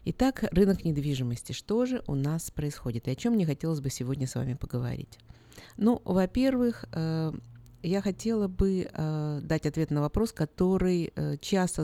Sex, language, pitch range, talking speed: female, Russian, 140-185 Hz, 145 wpm